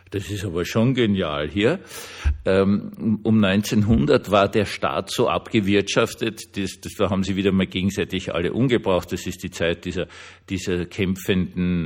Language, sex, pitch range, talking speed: German, male, 90-110 Hz, 140 wpm